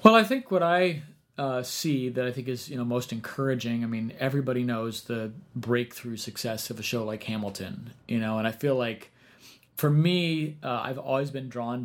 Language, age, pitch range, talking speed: English, 30-49, 115-140 Hz, 205 wpm